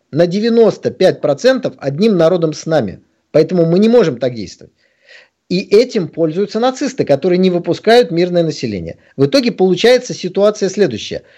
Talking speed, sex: 135 wpm, male